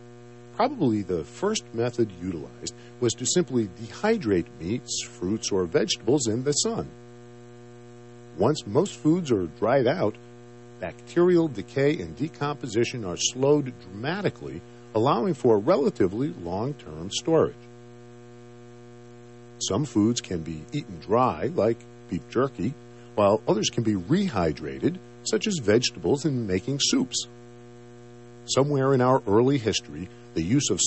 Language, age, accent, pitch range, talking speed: English, 50-69, American, 115-130 Hz, 120 wpm